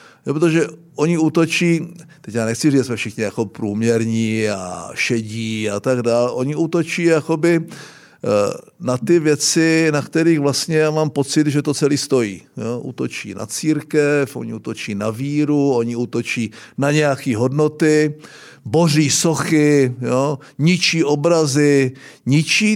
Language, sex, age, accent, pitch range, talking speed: Czech, male, 50-69, native, 135-165 Hz, 140 wpm